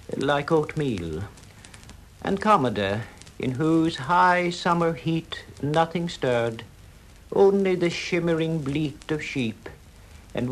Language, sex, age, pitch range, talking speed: English, male, 60-79, 115-160 Hz, 105 wpm